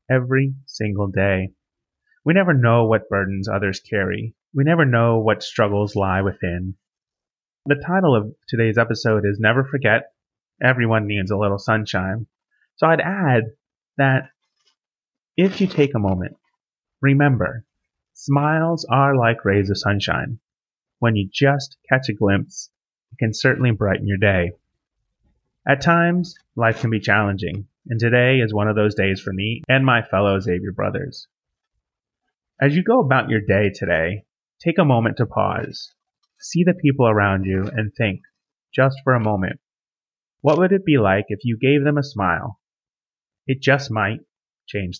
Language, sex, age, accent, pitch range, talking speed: English, male, 30-49, American, 100-140 Hz, 155 wpm